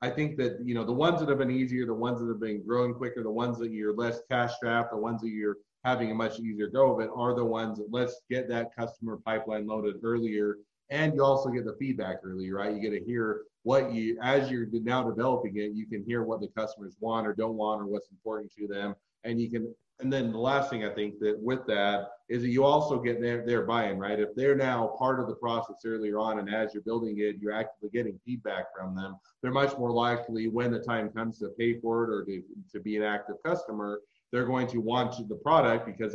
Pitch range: 105-125 Hz